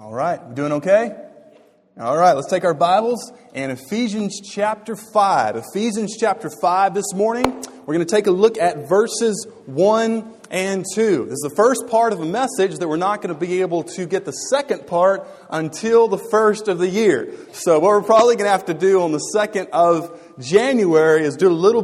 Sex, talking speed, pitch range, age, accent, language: male, 200 wpm, 160-215 Hz, 30-49, American, English